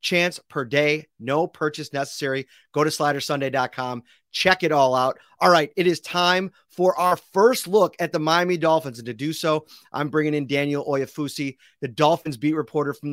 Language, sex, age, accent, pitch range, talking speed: English, male, 30-49, American, 135-170 Hz, 185 wpm